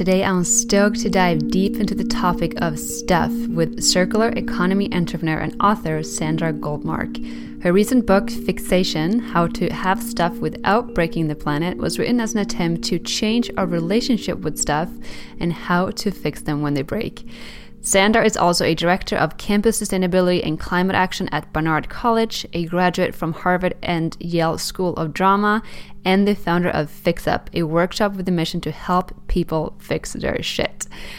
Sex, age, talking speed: female, 10-29, 175 wpm